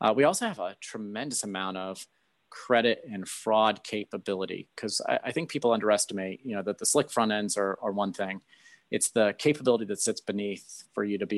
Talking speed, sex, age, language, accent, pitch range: 205 wpm, male, 30-49, English, American, 100-115 Hz